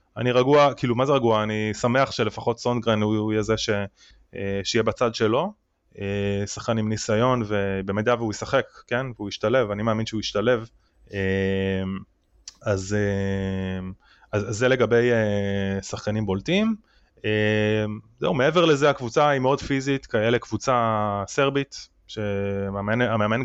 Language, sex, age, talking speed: Hebrew, male, 20-39, 125 wpm